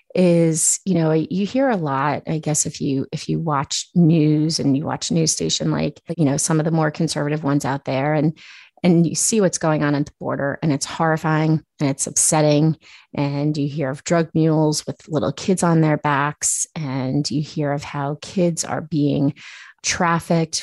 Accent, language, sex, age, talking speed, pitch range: American, English, female, 30-49, 200 wpm, 145-175 Hz